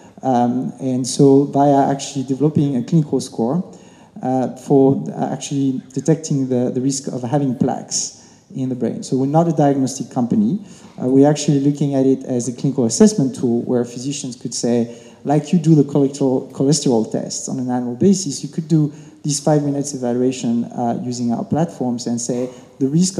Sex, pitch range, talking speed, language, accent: male, 125-150 Hz, 180 wpm, English, French